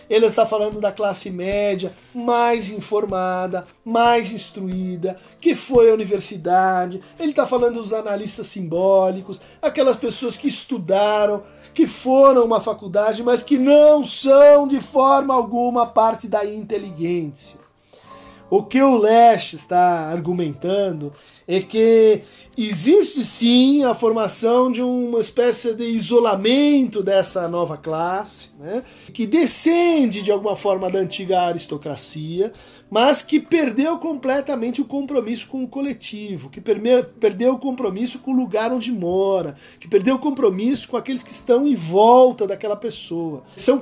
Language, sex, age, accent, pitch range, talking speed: Portuguese, male, 50-69, Brazilian, 195-255 Hz, 135 wpm